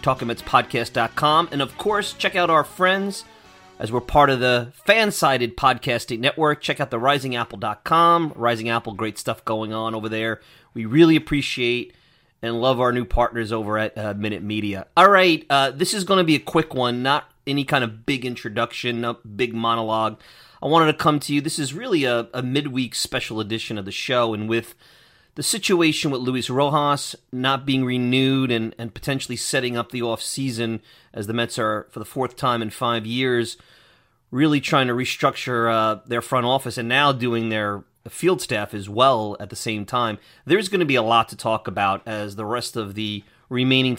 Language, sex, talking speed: English, male, 195 wpm